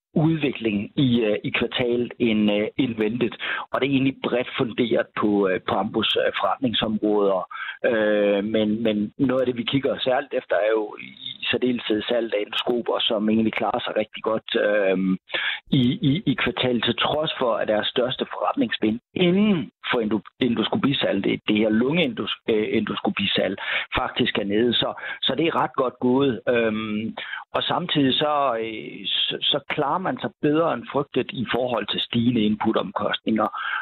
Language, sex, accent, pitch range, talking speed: Danish, male, native, 110-140 Hz, 160 wpm